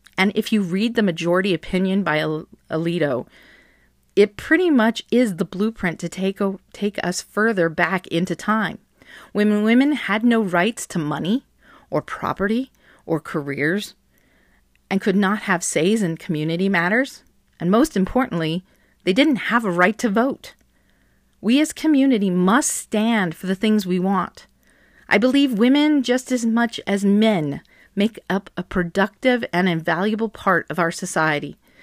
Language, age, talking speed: English, 40-59, 155 wpm